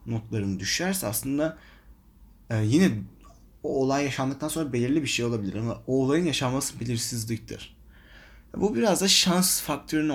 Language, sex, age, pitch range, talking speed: Turkish, male, 30-49, 110-150 Hz, 135 wpm